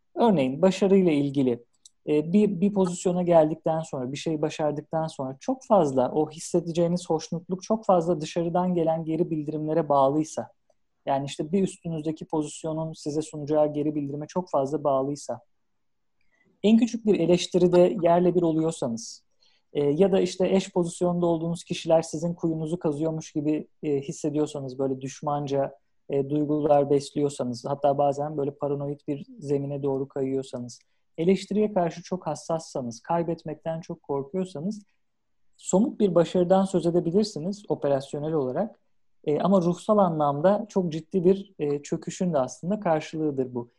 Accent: native